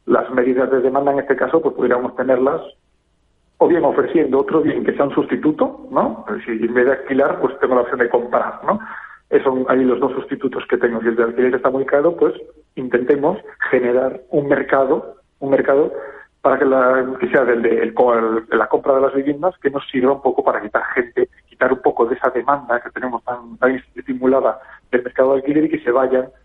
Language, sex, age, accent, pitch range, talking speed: Spanish, male, 40-59, Spanish, 120-150 Hz, 220 wpm